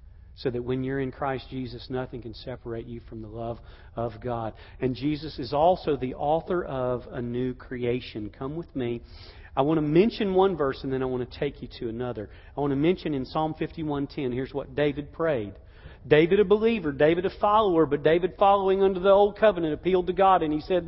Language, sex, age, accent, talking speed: English, male, 40-59, American, 215 wpm